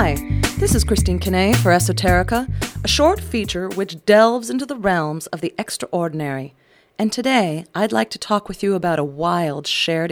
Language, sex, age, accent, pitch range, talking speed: English, female, 40-59, American, 155-215 Hz, 180 wpm